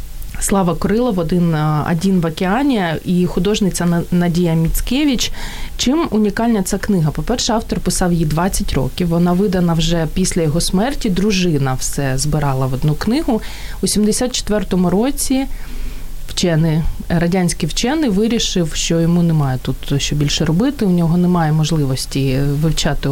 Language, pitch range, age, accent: Ukrainian, 155-205 Hz, 30-49, native